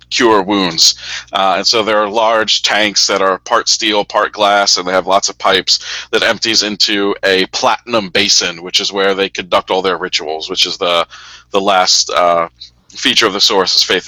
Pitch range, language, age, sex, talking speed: 95-115 Hz, English, 40-59, male, 200 wpm